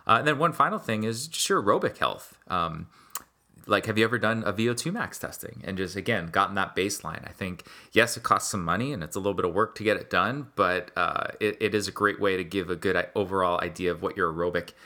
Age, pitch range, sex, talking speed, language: 30-49, 90-110 Hz, male, 255 wpm, English